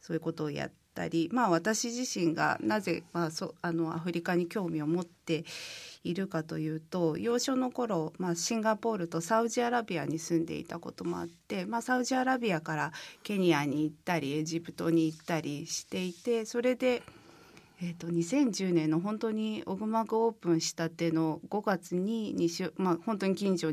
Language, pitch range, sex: Japanese, 160-205 Hz, female